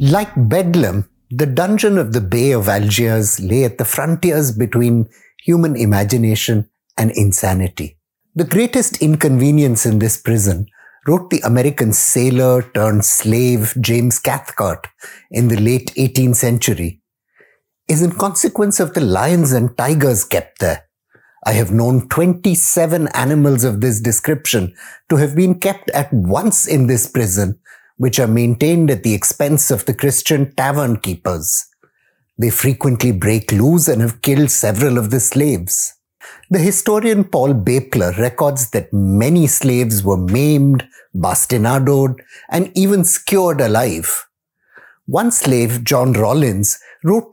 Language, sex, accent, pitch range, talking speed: English, male, Indian, 115-155 Hz, 135 wpm